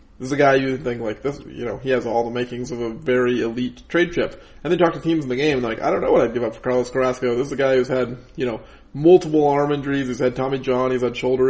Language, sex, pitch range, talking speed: English, male, 120-145 Hz, 305 wpm